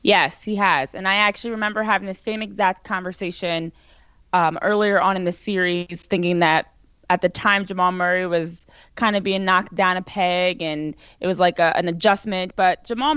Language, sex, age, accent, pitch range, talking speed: English, female, 20-39, American, 180-225 Hz, 190 wpm